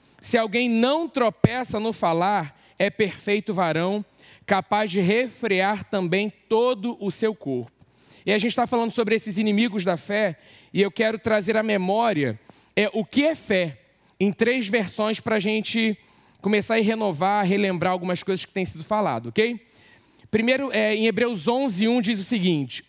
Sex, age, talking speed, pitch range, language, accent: male, 20-39, 170 wpm, 190-230 Hz, Portuguese, Brazilian